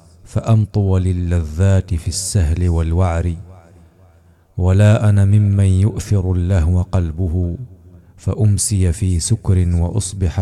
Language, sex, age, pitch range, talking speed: Arabic, male, 40-59, 90-100 Hz, 85 wpm